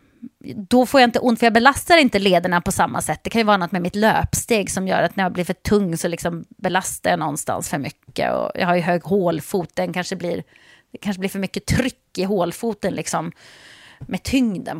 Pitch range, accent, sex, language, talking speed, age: 185-245 Hz, native, female, Swedish, 225 wpm, 30-49